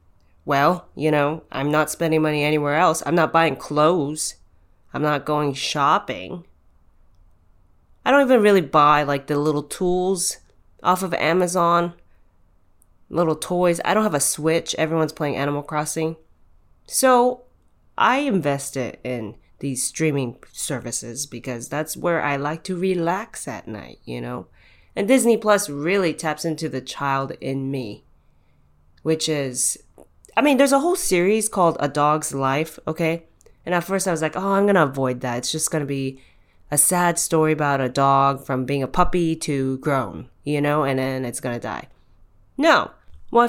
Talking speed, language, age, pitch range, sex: 165 wpm, English, 20-39, 130-175 Hz, female